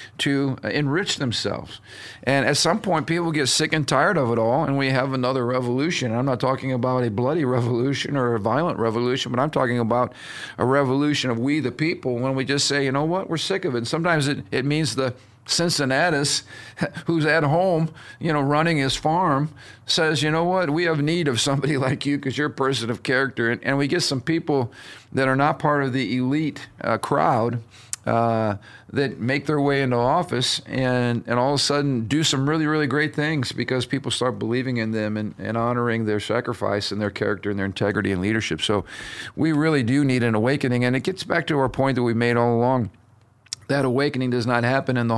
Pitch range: 115-145 Hz